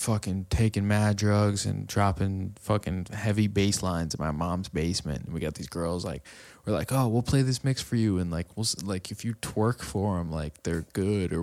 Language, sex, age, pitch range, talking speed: English, male, 20-39, 90-115 Hz, 220 wpm